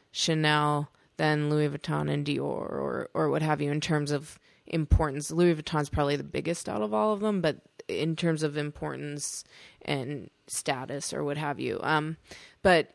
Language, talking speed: English, 180 wpm